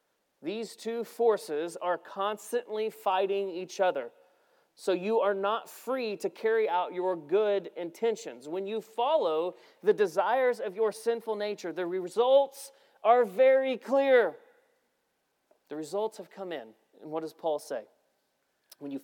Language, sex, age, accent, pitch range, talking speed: English, male, 40-59, American, 160-225 Hz, 140 wpm